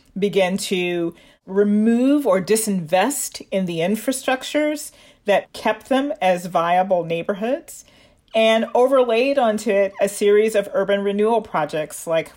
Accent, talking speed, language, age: American, 120 wpm, English, 40-59